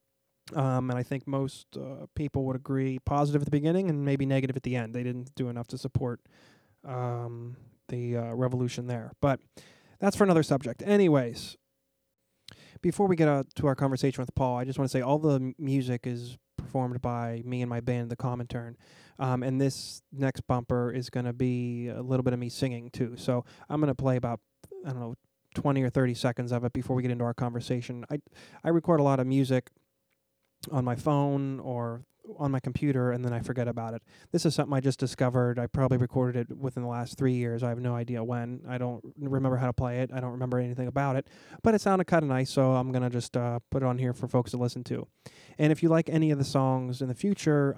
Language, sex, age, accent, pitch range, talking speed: English, male, 20-39, American, 125-140 Hz, 230 wpm